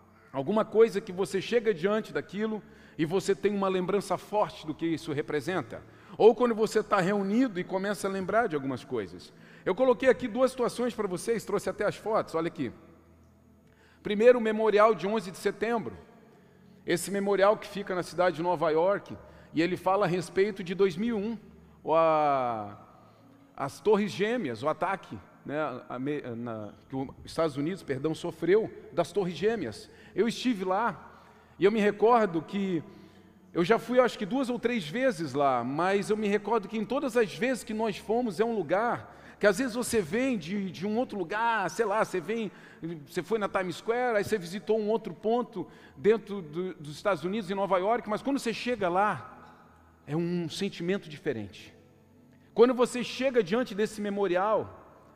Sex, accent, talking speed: male, Brazilian, 180 wpm